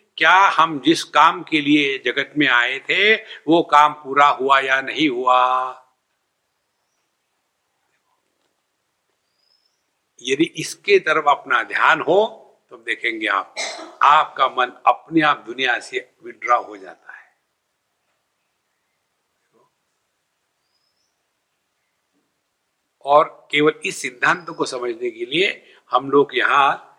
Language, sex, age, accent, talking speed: English, male, 60-79, Indian, 105 wpm